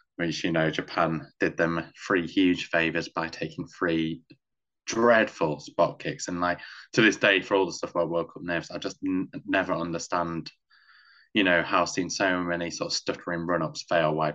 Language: English